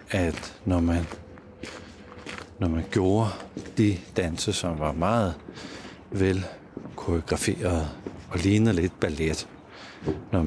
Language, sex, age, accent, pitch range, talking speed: Danish, male, 60-79, native, 80-100 Hz, 90 wpm